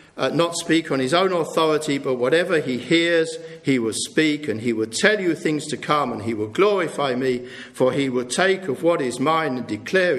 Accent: British